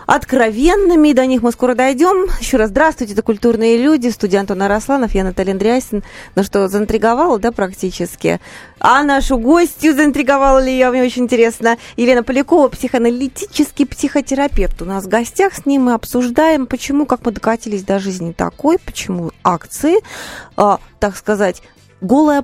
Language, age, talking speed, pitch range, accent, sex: Russian, 20-39, 150 wpm, 195-275 Hz, native, female